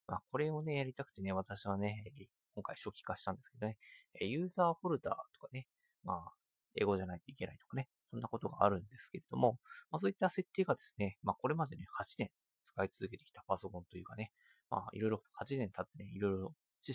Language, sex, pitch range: Japanese, male, 100-150 Hz